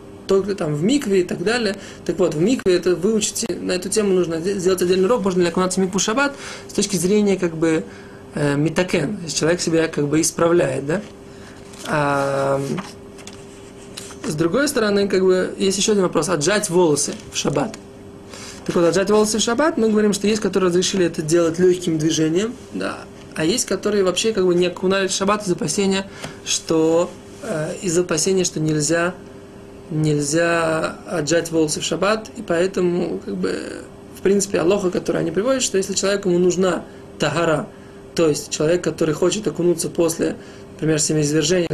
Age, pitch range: 20-39, 165-195 Hz